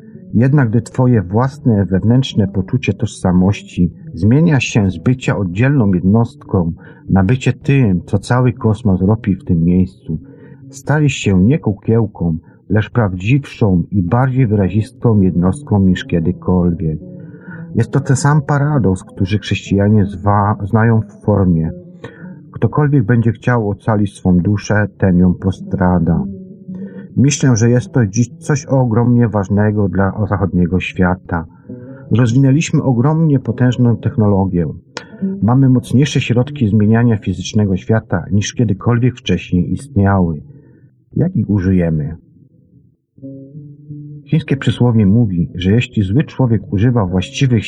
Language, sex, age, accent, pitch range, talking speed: Polish, male, 50-69, native, 95-130 Hz, 115 wpm